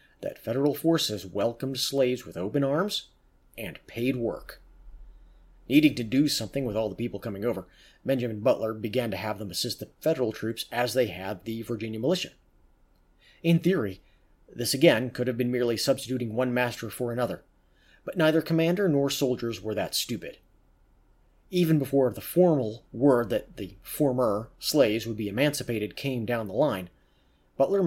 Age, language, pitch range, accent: 30-49, English, 110-140 Hz, American